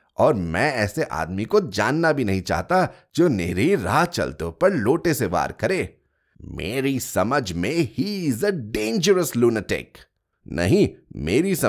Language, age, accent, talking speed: Hindi, 30-49, native, 125 wpm